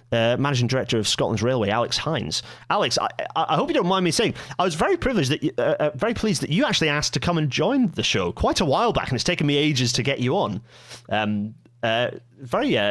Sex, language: male, English